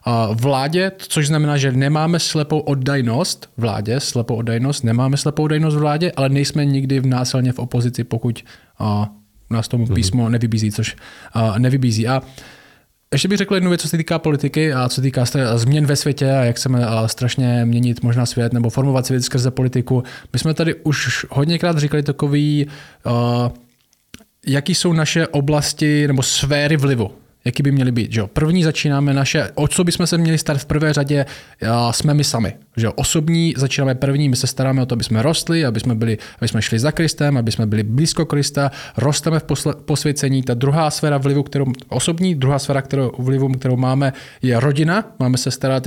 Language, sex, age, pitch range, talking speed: Czech, male, 20-39, 125-150 Hz, 185 wpm